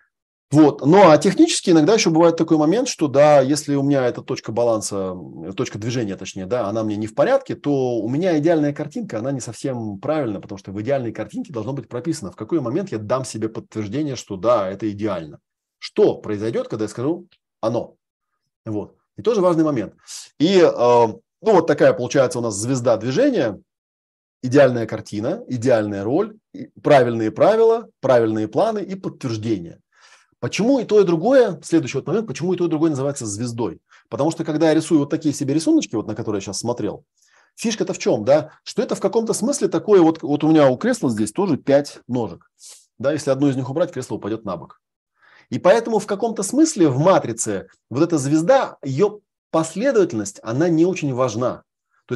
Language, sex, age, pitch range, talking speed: Russian, male, 30-49, 115-175 Hz, 185 wpm